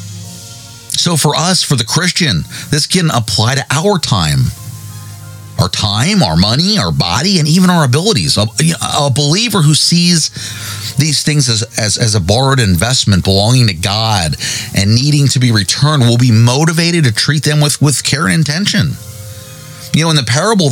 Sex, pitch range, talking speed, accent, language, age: male, 115-155 Hz, 175 wpm, American, English, 40-59